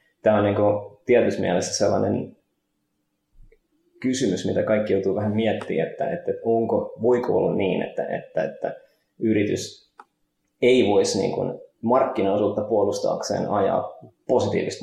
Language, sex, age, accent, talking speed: Finnish, male, 20-39, native, 120 wpm